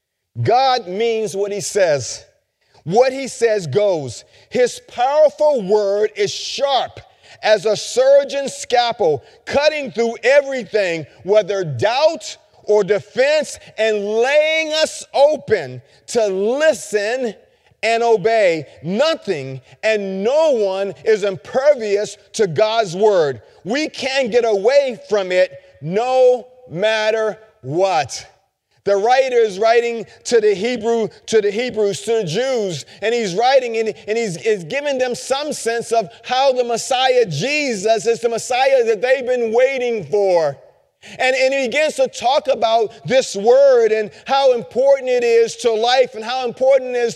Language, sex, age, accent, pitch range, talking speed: English, male, 40-59, American, 210-270 Hz, 135 wpm